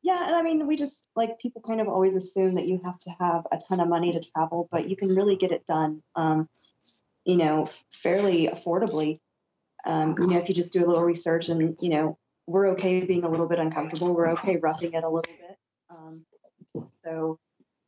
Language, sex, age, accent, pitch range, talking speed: English, female, 20-39, American, 160-185 Hz, 215 wpm